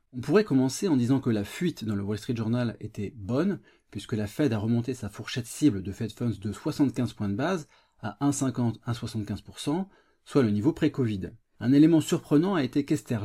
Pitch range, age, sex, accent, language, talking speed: 110-140 Hz, 30-49, male, French, French, 195 wpm